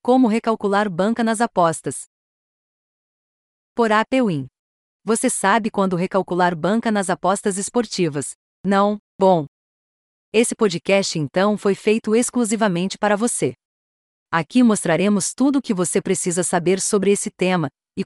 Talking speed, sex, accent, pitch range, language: 125 wpm, female, Brazilian, 170-225 Hz, Portuguese